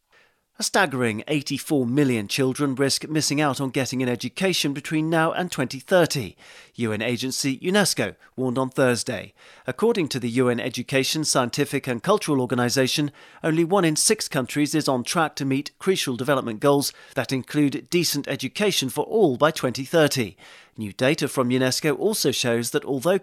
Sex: male